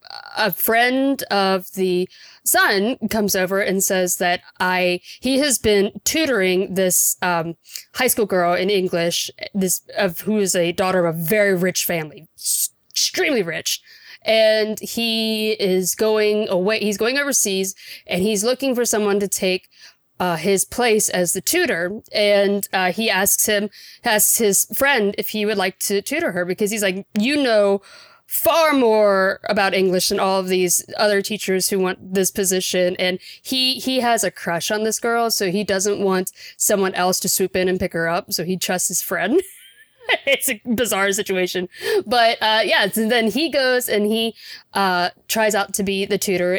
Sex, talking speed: female, 180 wpm